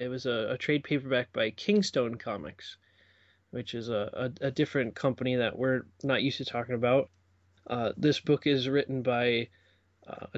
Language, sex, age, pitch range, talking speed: English, male, 20-39, 115-140 Hz, 175 wpm